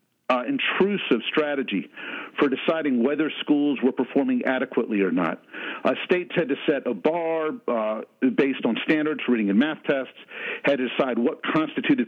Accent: American